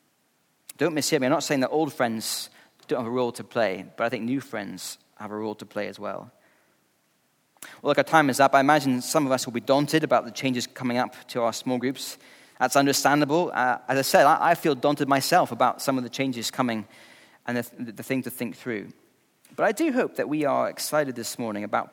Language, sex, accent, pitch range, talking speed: English, male, British, 125-155 Hz, 235 wpm